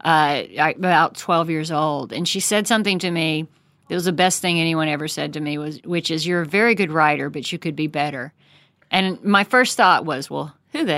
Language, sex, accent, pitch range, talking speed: English, female, American, 155-190 Hz, 230 wpm